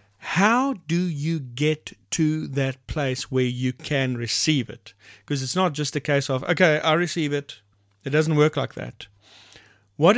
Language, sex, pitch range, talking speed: English, male, 115-155 Hz, 170 wpm